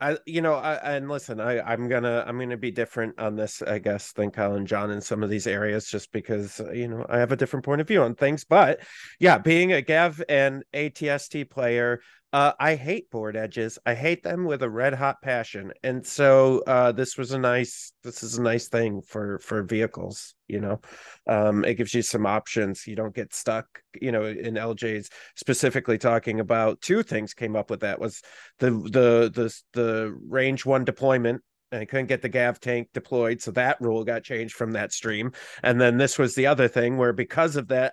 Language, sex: English, male